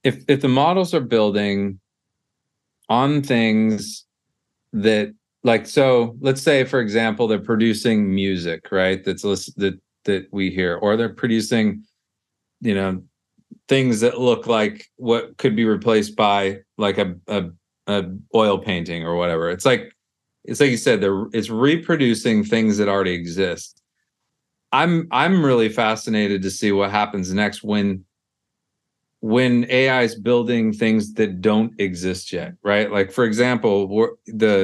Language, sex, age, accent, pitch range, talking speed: English, male, 40-59, American, 100-120 Hz, 145 wpm